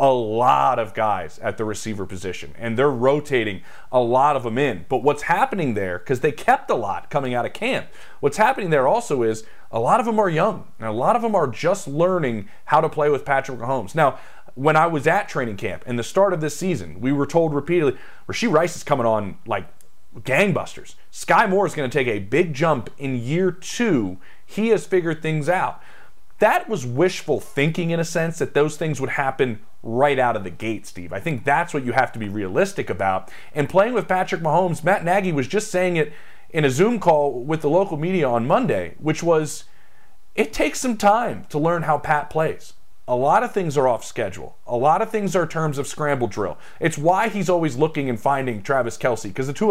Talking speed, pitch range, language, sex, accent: 220 wpm, 130-180 Hz, English, male, American